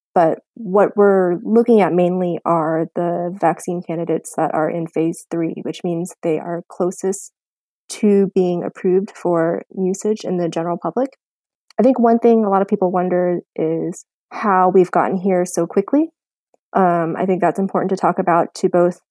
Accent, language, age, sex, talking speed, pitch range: American, English, 20-39, female, 175 wpm, 170-210 Hz